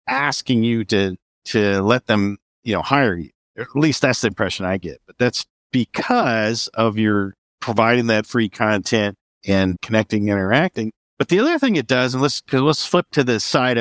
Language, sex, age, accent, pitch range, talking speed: English, male, 50-69, American, 105-140 Hz, 190 wpm